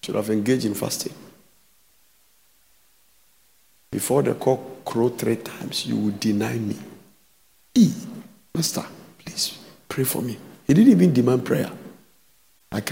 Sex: male